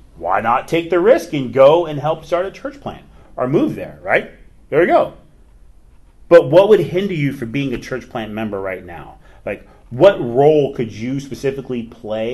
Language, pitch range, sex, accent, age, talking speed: English, 115-165 Hz, male, American, 30-49, 195 wpm